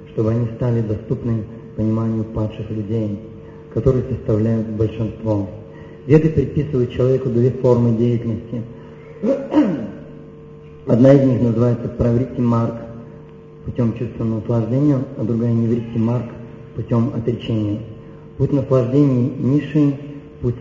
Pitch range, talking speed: 110-130 Hz, 105 wpm